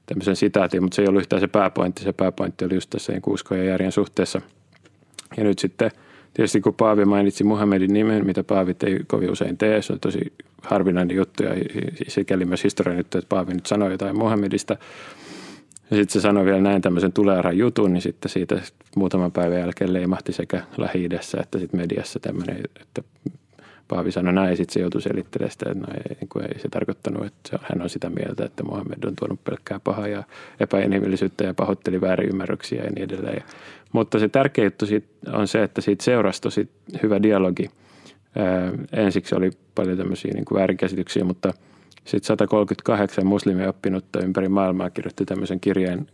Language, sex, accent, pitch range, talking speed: Finnish, male, native, 90-100 Hz, 175 wpm